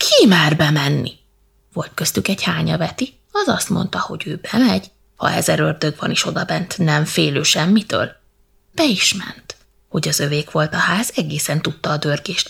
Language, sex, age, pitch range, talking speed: Hungarian, female, 20-39, 165-255 Hz, 175 wpm